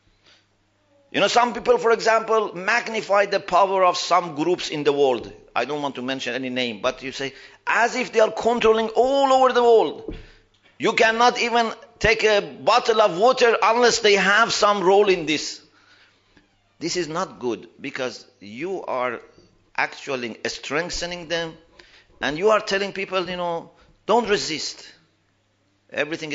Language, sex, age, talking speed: English, male, 50-69, 155 wpm